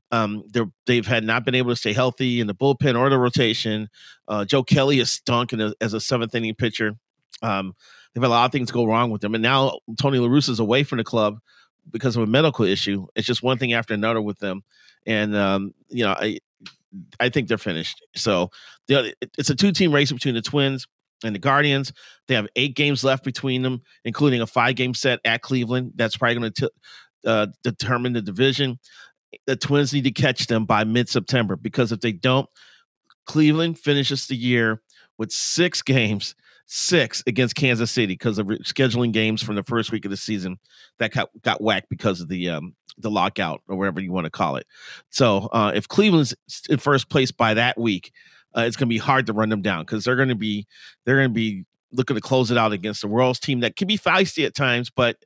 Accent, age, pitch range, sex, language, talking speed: American, 40-59, 110-135 Hz, male, English, 210 wpm